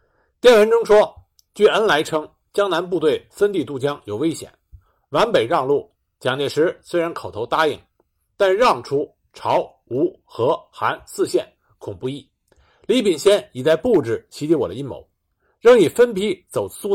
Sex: male